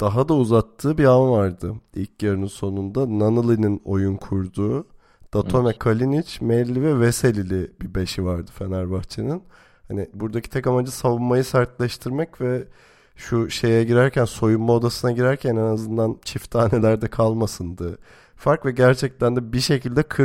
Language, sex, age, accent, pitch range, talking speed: Turkish, male, 30-49, native, 100-125 Hz, 135 wpm